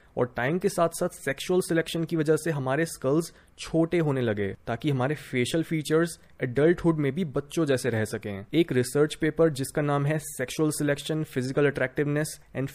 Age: 20-39